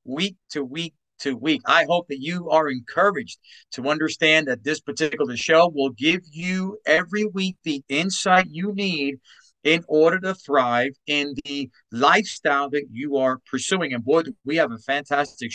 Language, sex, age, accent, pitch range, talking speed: English, male, 40-59, American, 140-185 Hz, 165 wpm